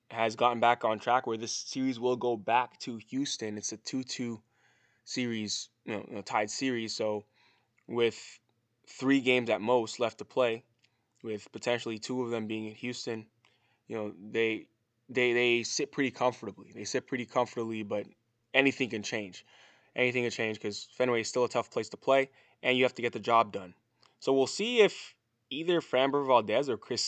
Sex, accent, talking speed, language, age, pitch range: male, American, 190 wpm, English, 20-39, 110-130 Hz